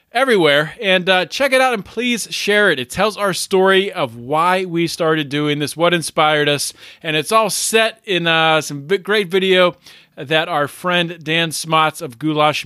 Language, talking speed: English, 185 wpm